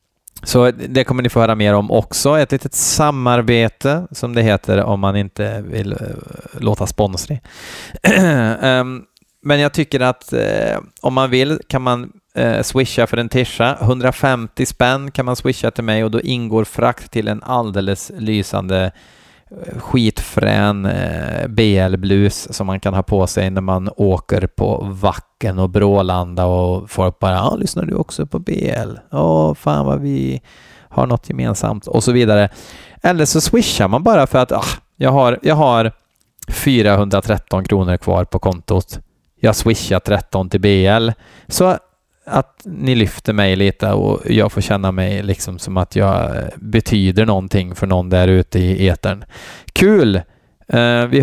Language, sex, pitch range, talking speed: Swedish, male, 95-125 Hz, 150 wpm